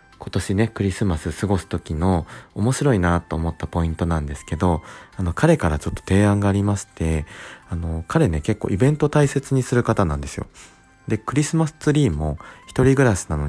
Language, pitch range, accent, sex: Japanese, 85-125 Hz, native, male